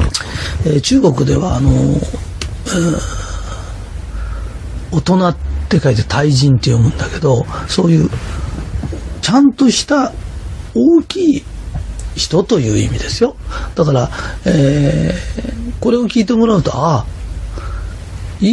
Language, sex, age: Japanese, male, 40-59